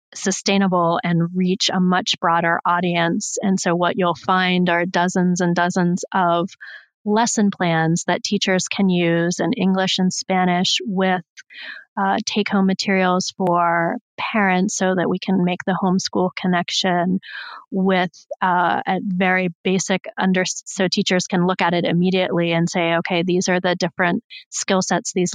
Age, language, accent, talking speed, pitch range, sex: 30-49, English, American, 155 wpm, 175-195 Hz, female